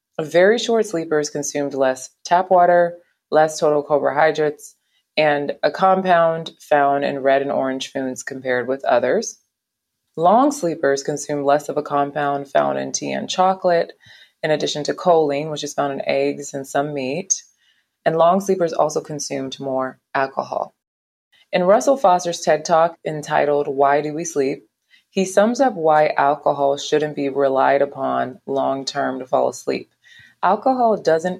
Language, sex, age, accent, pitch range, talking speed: English, female, 20-39, American, 140-180 Hz, 150 wpm